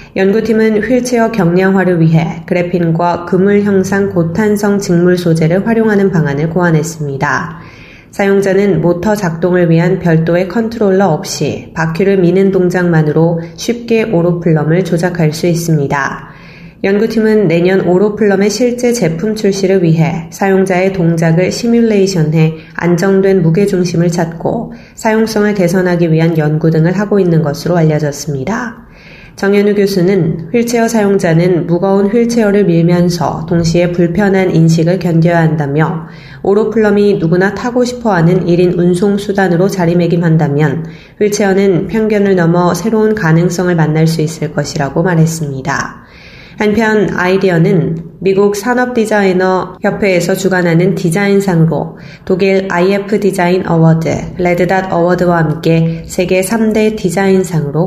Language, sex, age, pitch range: Korean, female, 20-39, 165-200 Hz